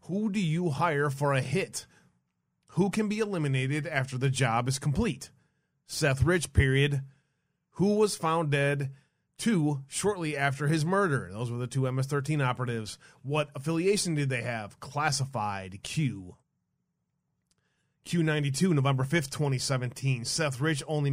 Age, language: 30-49, English